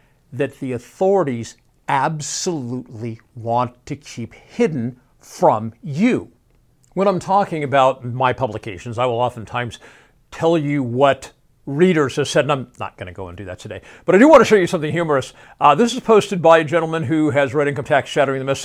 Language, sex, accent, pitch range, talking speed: English, male, American, 125-170 Hz, 190 wpm